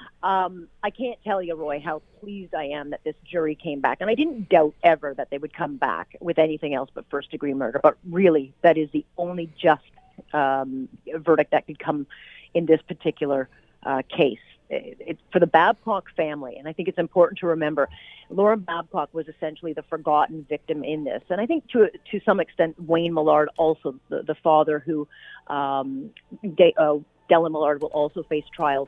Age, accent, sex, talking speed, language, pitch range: 40-59, American, female, 195 wpm, English, 150-180 Hz